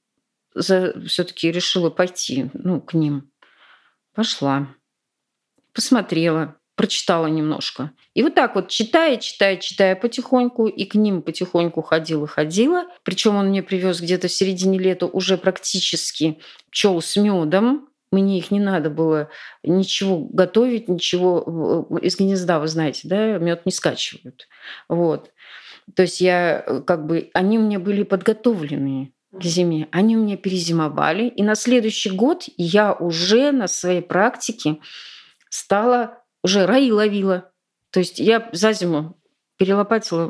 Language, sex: Russian, female